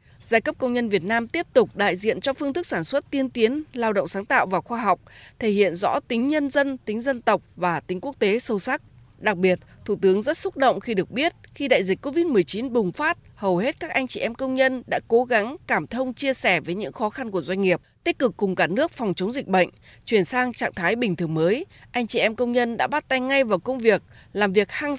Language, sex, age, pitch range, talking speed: Vietnamese, female, 20-39, 195-265 Hz, 260 wpm